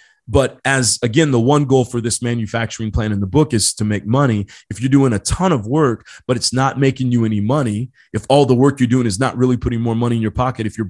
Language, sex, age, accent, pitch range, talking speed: English, male, 30-49, American, 110-140 Hz, 265 wpm